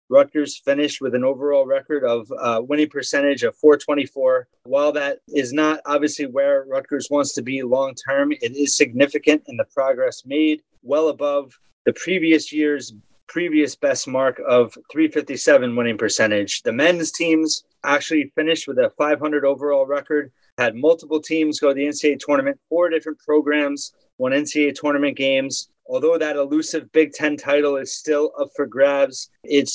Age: 30-49